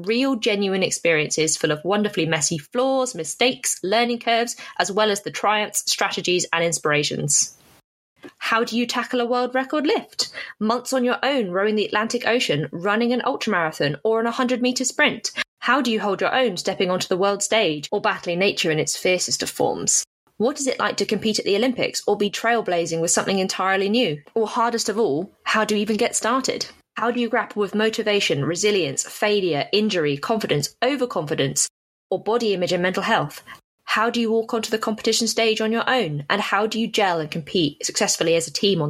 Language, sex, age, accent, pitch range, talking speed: English, female, 20-39, British, 185-235 Hz, 195 wpm